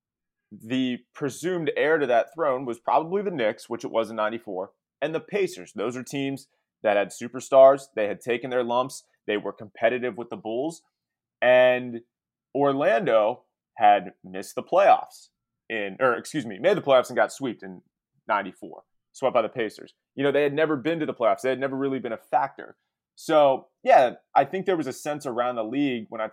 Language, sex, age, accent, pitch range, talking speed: English, male, 20-39, American, 115-150 Hz, 195 wpm